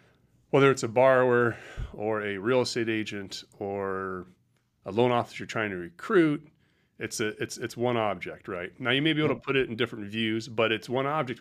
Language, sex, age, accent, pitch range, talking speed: English, male, 30-49, American, 110-125 Hz, 200 wpm